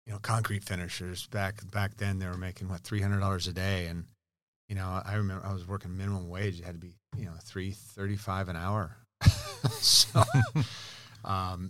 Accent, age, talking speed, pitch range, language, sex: American, 40-59, 200 wpm, 90-110 Hz, English, male